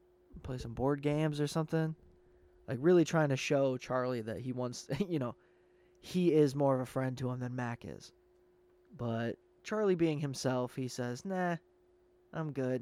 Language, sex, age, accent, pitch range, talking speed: English, male, 20-39, American, 125-180 Hz, 175 wpm